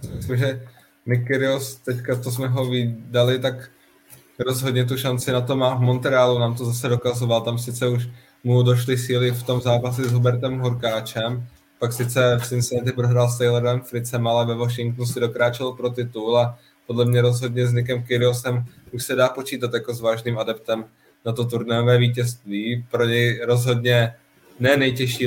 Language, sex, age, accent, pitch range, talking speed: Czech, male, 20-39, native, 115-125 Hz, 175 wpm